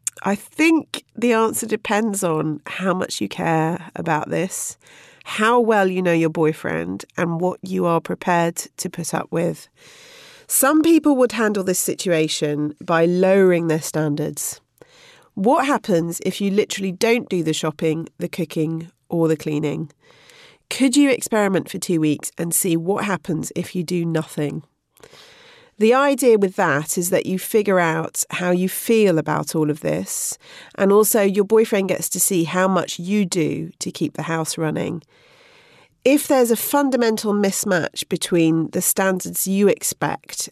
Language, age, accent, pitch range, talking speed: English, 40-59, British, 165-230 Hz, 160 wpm